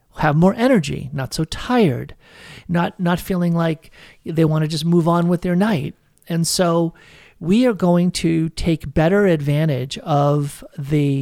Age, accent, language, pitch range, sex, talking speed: 50-69, American, English, 155-190 Hz, male, 160 wpm